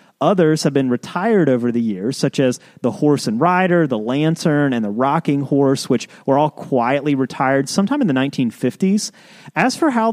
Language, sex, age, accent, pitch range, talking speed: English, male, 30-49, American, 140-200 Hz, 185 wpm